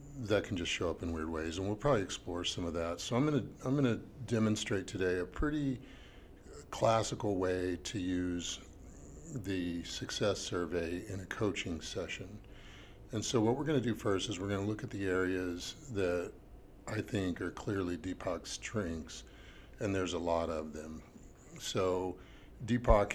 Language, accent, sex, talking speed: English, American, male, 175 wpm